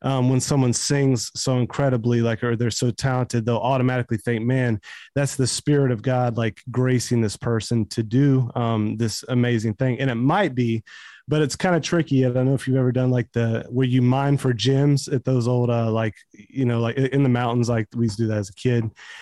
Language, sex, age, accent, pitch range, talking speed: English, male, 30-49, American, 115-135 Hz, 230 wpm